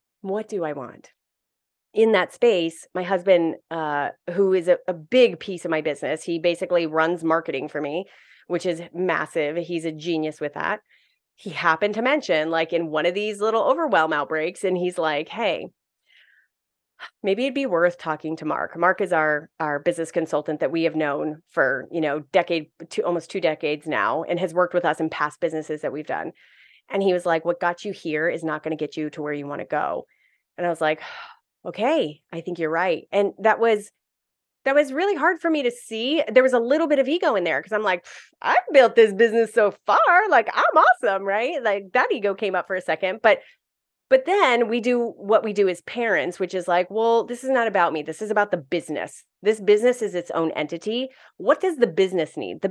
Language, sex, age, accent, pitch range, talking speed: English, female, 30-49, American, 165-225 Hz, 220 wpm